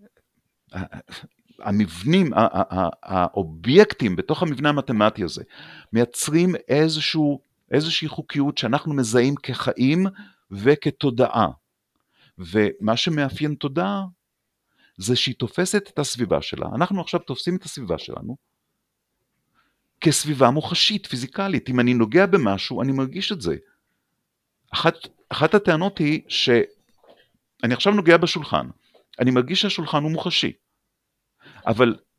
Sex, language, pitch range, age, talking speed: male, Hebrew, 130-175 Hz, 40-59, 105 wpm